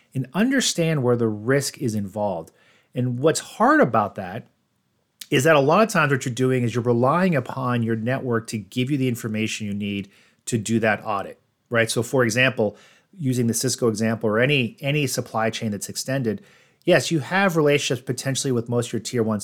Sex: male